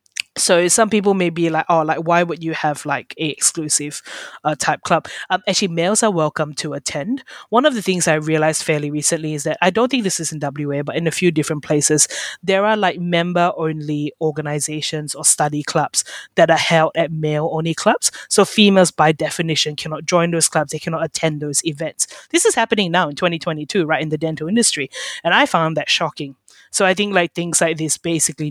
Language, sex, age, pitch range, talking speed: English, female, 20-39, 155-185 Hz, 215 wpm